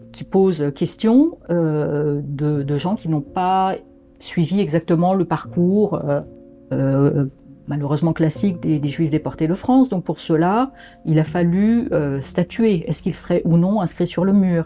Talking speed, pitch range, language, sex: 170 wpm, 150-185 Hz, French, female